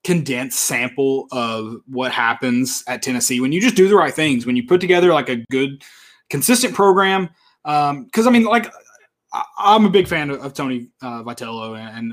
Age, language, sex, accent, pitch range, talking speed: 20-39, English, male, American, 120-170 Hz, 200 wpm